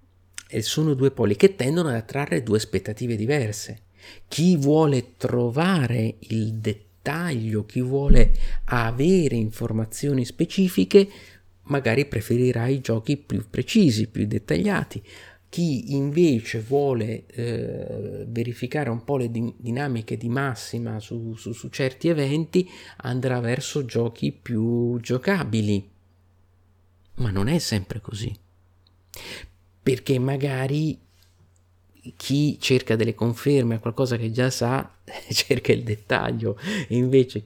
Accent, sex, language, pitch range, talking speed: native, male, Italian, 110-140 Hz, 110 wpm